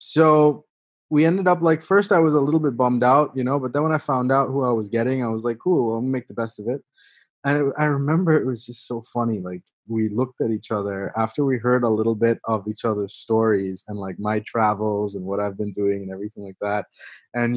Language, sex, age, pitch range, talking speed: English, male, 20-39, 115-165 Hz, 255 wpm